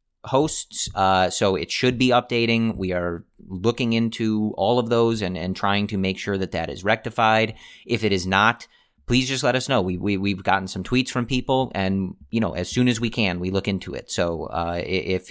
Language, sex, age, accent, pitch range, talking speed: English, male, 30-49, American, 90-115 Hz, 220 wpm